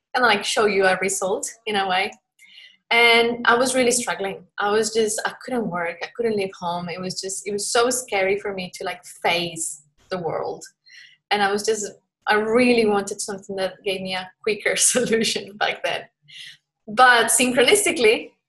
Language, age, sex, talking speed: English, 20-39, female, 180 wpm